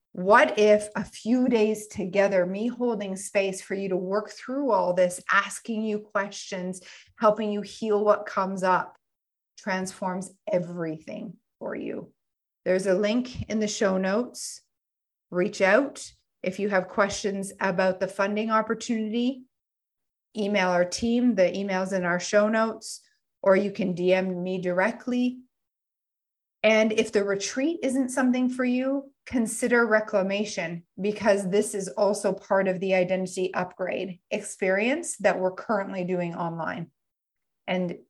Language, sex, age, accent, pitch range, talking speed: English, female, 40-59, American, 185-220 Hz, 135 wpm